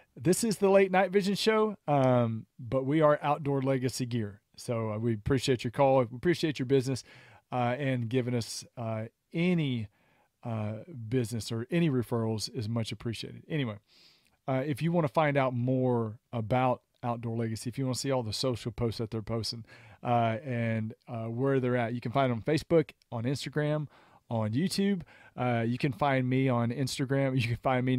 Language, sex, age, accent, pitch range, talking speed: English, male, 40-59, American, 120-140 Hz, 190 wpm